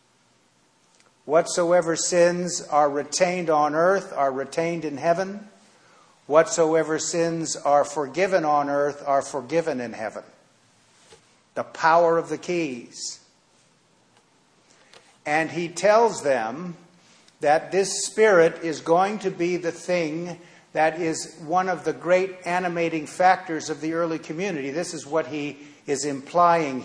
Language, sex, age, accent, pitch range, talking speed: English, male, 50-69, American, 150-180 Hz, 125 wpm